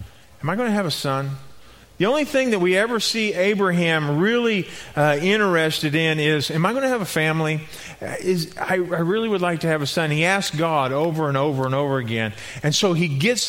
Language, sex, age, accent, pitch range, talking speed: English, male, 40-59, American, 130-190 Hz, 220 wpm